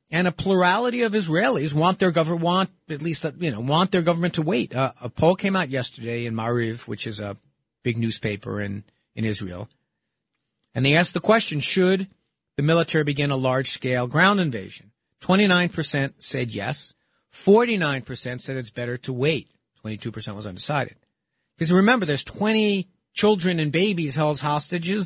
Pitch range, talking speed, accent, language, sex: 120-165 Hz, 165 wpm, American, English, male